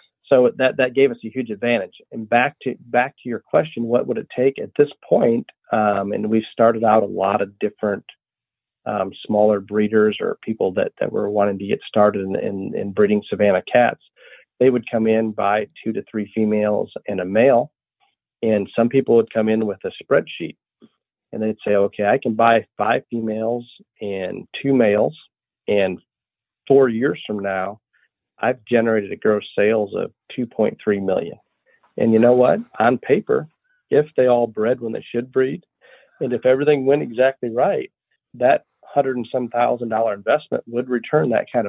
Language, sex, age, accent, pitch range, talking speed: English, male, 40-59, American, 105-130 Hz, 180 wpm